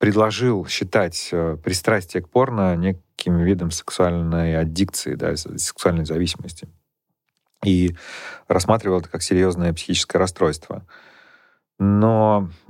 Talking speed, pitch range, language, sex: 95 wpm, 85-100 Hz, Russian, male